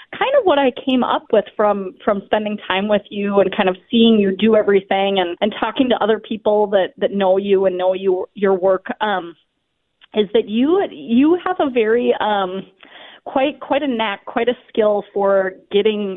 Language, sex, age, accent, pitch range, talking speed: English, female, 30-49, American, 195-250 Hz, 195 wpm